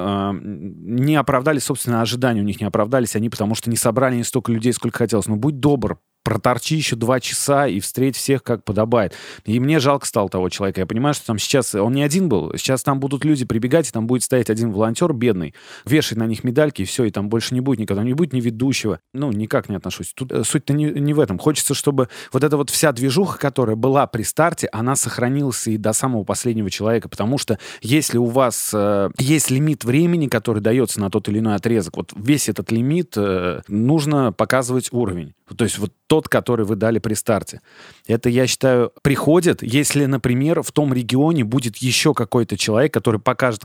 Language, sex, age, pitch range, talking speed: Russian, male, 30-49, 110-140 Hz, 205 wpm